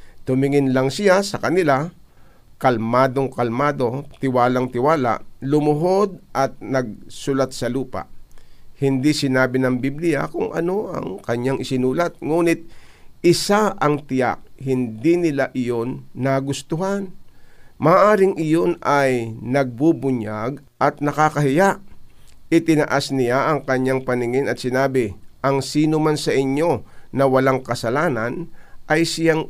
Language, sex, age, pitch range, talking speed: Filipino, male, 50-69, 130-160 Hz, 105 wpm